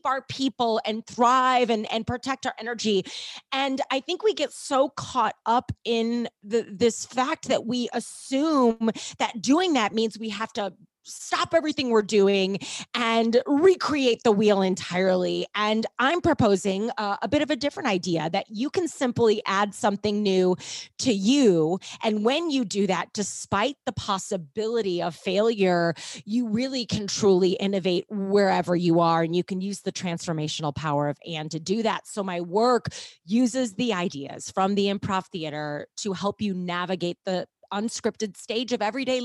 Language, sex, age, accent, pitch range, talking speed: English, female, 30-49, American, 185-245 Hz, 165 wpm